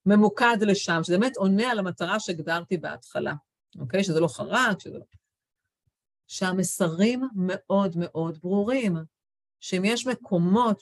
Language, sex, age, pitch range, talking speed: English, female, 50-69, 170-235 Hz, 115 wpm